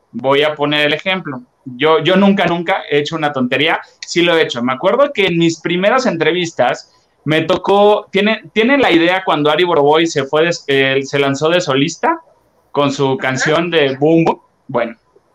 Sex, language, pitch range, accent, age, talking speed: male, Spanish, 140-180 Hz, Mexican, 20-39, 190 wpm